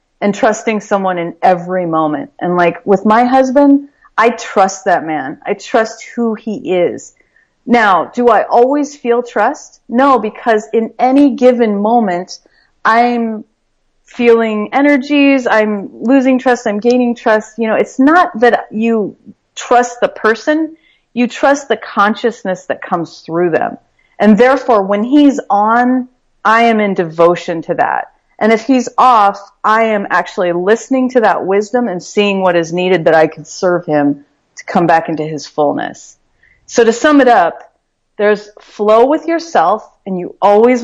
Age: 30-49